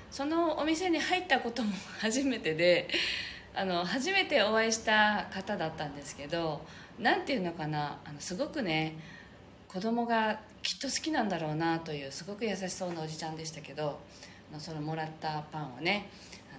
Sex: female